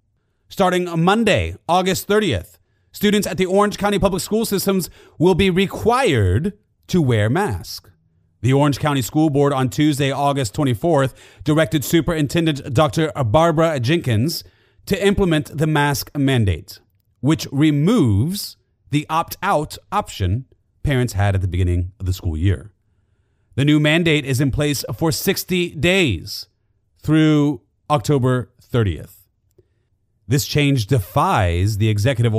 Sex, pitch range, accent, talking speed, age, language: male, 105-155 Hz, American, 125 wpm, 30-49, English